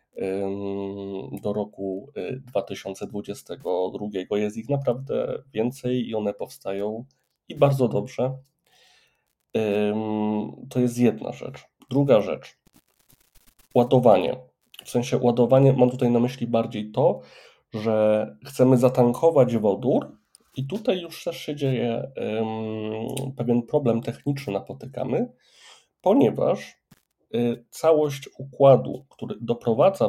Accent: native